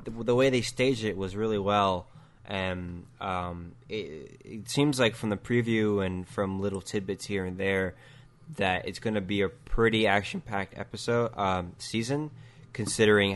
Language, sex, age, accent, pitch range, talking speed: English, male, 20-39, American, 95-130 Hz, 160 wpm